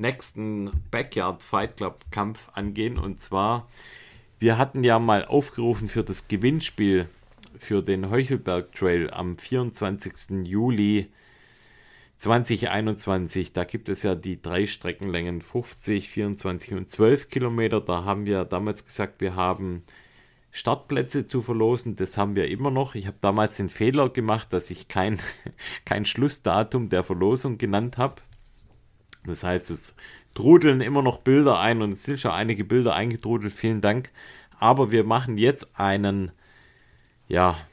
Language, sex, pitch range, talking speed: German, male, 95-125 Hz, 140 wpm